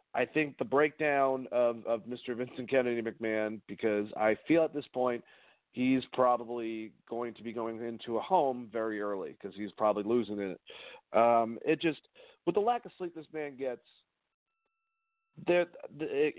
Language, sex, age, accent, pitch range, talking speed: English, male, 40-59, American, 110-145 Hz, 160 wpm